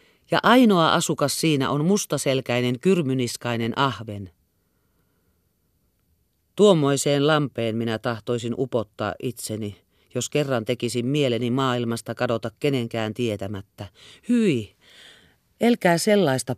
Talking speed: 90 wpm